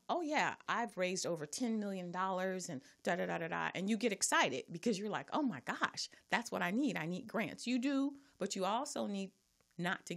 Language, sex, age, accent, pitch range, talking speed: English, female, 30-49, American, 165-220 Hz, 230 wpm